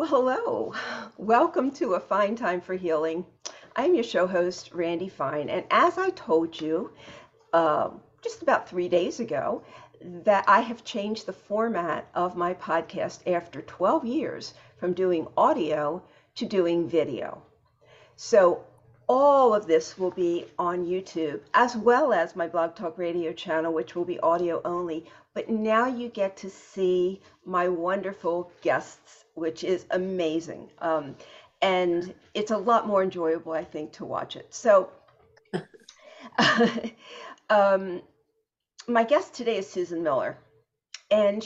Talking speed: 145 wpm